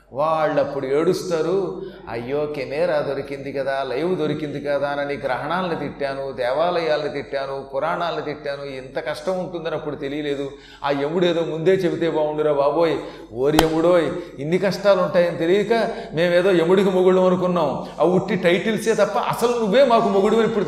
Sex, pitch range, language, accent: male, 150-205 Hz, Telugu, native